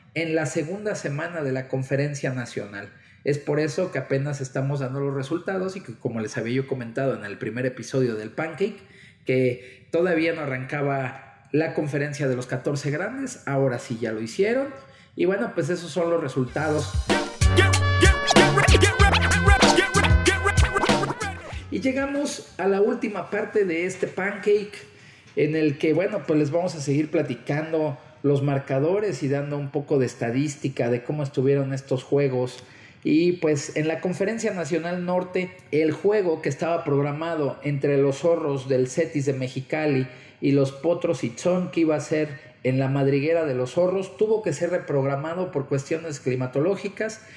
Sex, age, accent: male, 40-59, Mexican